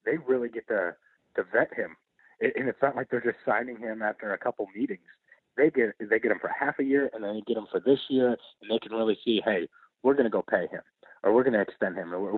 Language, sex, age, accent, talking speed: English, male, 30-49, American, 265 wpm